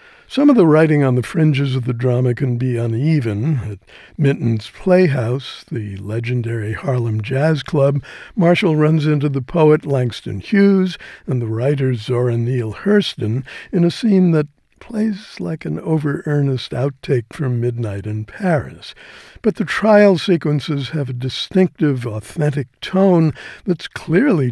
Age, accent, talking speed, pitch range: 60-79, American, 140 wpm, 120-160 Hz